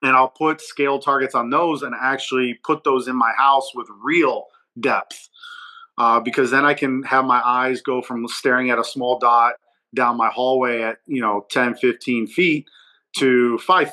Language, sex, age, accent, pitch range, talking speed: English, male, 30-49, American, 115-145 Hz, 185 wpm